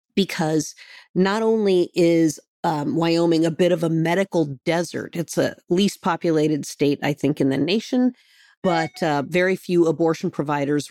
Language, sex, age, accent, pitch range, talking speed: English, female, 40-59, American, 155-185 Hz, 155 wpm